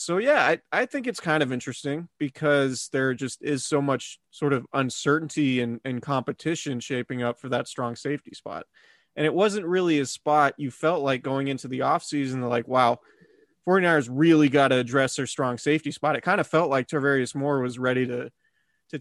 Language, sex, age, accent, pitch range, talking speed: English, male, 20-39, American, 130-155 Hz, 195 wpm